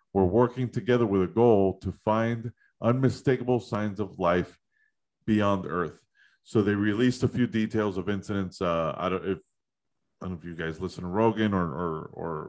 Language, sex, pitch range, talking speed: English, male, 95-120 Hz, 185 wpm